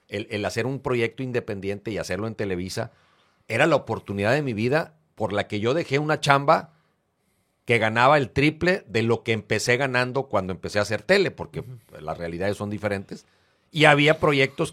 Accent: Mexican